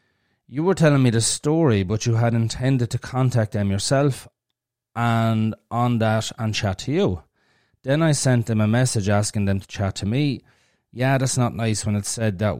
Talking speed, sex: 195 wpm, male